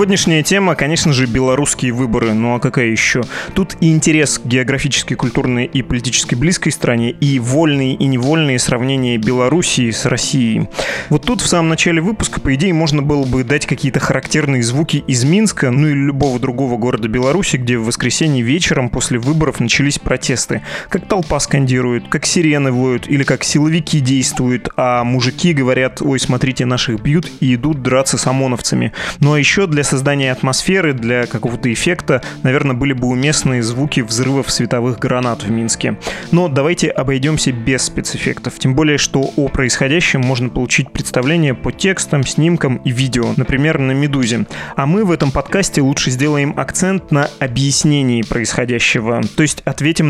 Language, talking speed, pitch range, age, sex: Russian, 160 wpm, 130-155 Hz, 20-39, male